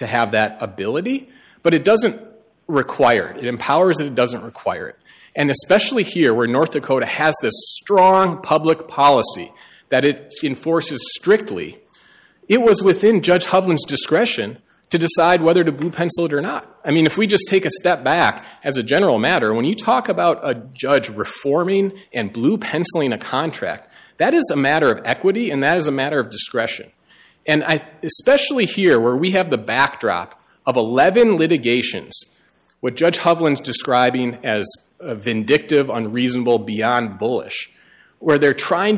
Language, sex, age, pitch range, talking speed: English, male, 40-59, 125-185 Hz, 165 wpm